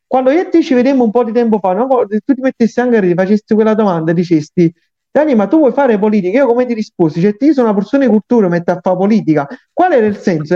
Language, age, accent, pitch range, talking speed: Italian, 40-59, native, 190-275 Hz, 275 wpm